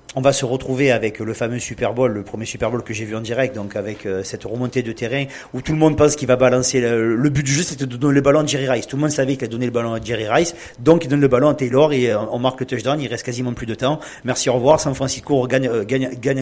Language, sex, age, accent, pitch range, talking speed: French, male, 40-59, French, 125-150 Hz, 305 wpm